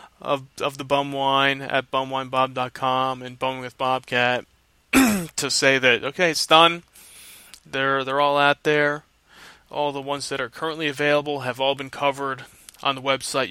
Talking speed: 160 wpm